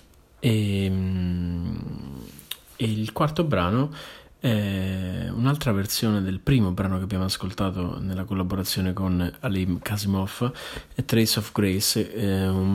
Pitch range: 95-115 Hz